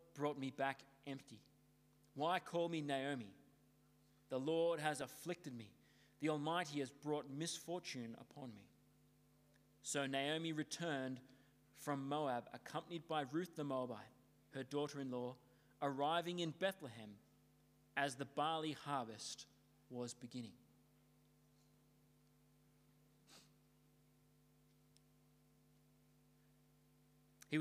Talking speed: 95 wpm